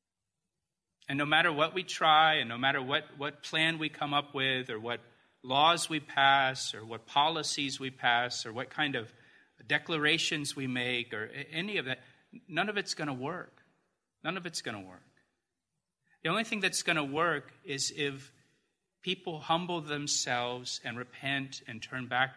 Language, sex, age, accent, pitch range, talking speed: English, male, 40-59, American, 130-165 Hz, 175 wpm